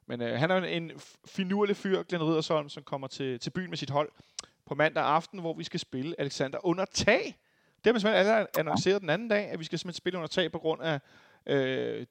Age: 30-49